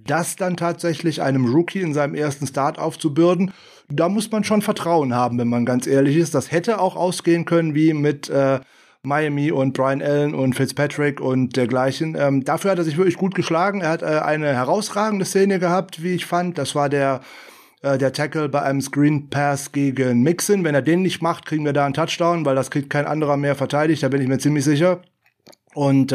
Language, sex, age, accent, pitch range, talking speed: German, male, 30-49, German, 140-170 Hz, 210 wpm